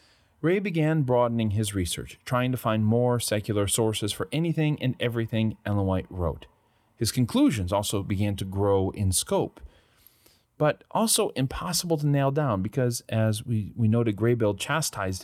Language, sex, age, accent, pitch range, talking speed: English, male, 30-49, American, 95-125 Hz, 155 wpm